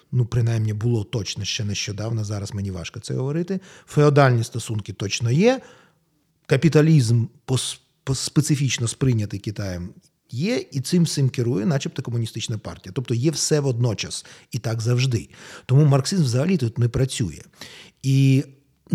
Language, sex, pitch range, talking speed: Ukrainian, male, 120-165 Hz, 135 wpm